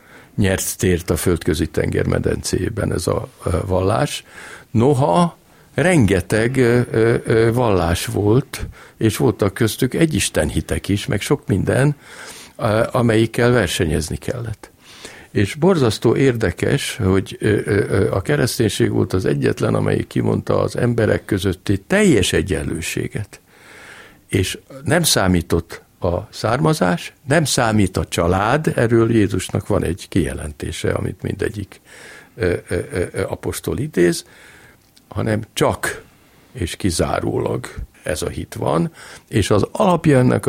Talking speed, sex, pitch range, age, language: 100 wpm, male, 90-125 Hz, 60-79, Hungarian